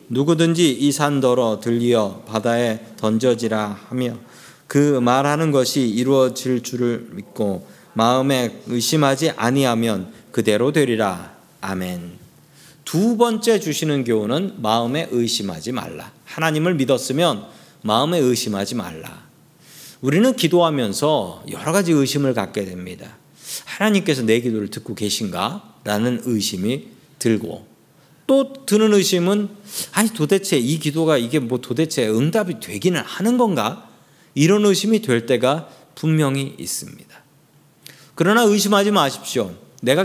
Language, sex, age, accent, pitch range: Korean, male, 40-59, native, 120-175 Hz